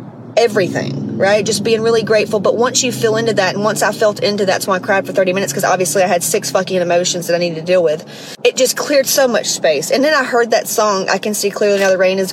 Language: English